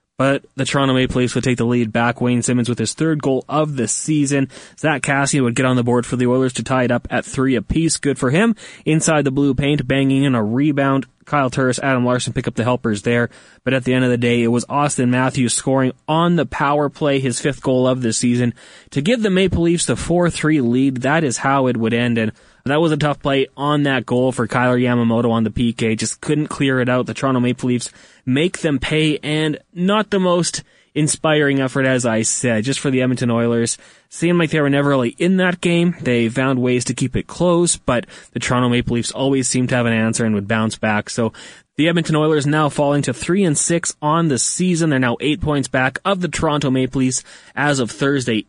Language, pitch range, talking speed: English, 125-150 Hz, 235 wpm